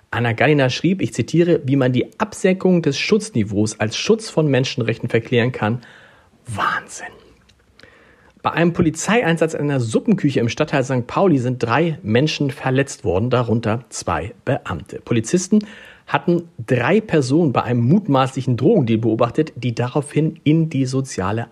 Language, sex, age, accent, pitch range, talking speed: German, male, 50-69, German, 115-165 Hz, 140 wpm